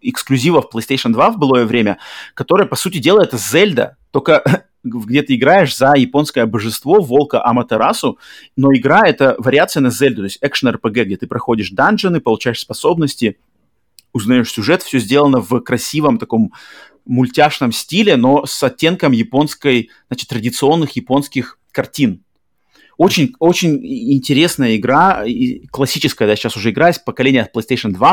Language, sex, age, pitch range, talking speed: Russian, male, 30-49, 115-145 Hz, 145 wpm